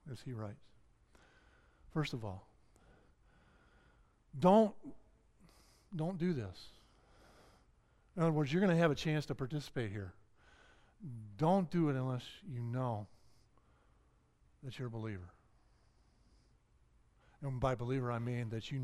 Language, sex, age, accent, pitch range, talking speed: English, male, 50-69, American, 110-155 Hz, 125 wpm